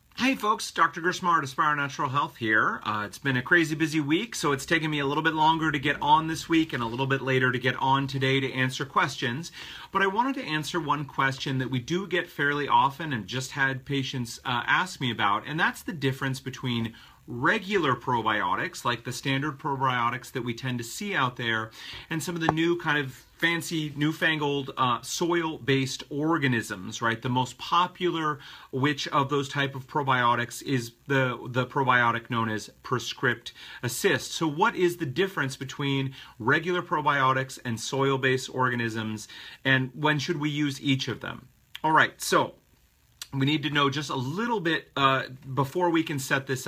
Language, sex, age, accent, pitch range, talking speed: English, male, 40-59, American, 125-160 Hz, 185 wpm